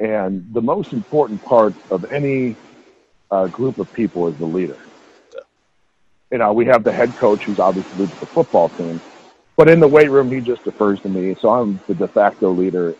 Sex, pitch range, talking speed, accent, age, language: male, 95-125 Hz, 195 wpm, American, 40-59, English